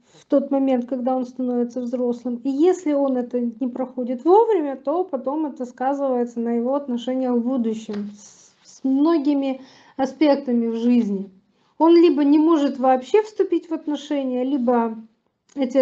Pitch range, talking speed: 245-290 Hz, 145 wpm